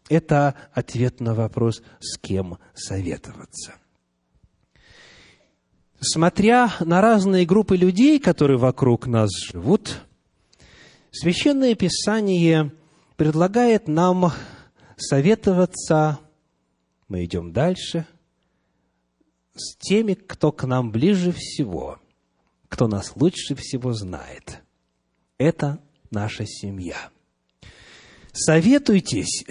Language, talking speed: English, 80 wpm